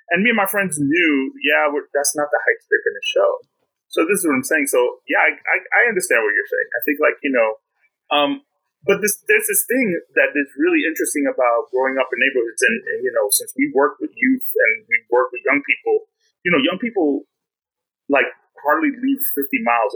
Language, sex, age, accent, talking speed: English, male, 30-49, American, 215 wpm